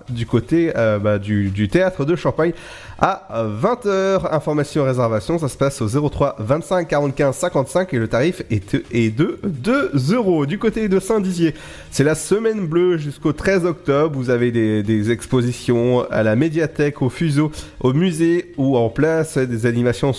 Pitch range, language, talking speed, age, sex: 115-165 Hz, French, 170 wpm, 30-49, male